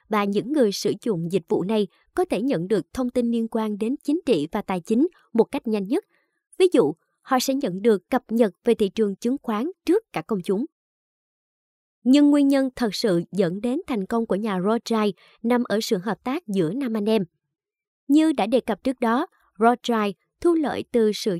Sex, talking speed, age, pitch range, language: male, 210 wpm, 20-39, 210-270 Hz, Vietnamese